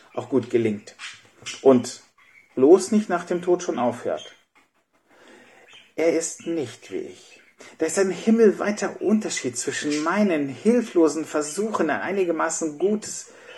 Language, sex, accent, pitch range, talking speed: German, male, German, 165-220 Hz, 125 wpm